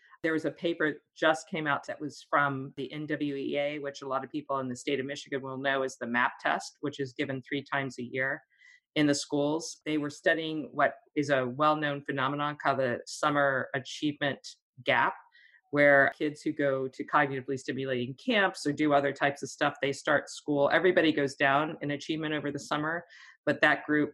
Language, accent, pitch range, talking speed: English, American, 135-155 Hz, 195 wpm